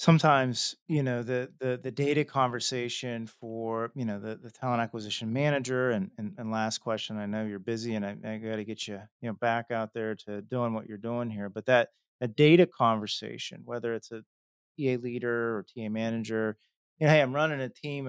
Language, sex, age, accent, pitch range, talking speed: English, male, 30-49, American, 110-140 Hz, 210 wpm